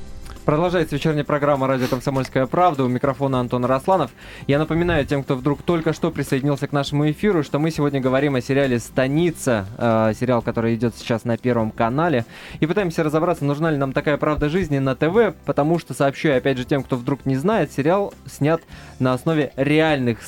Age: 20-39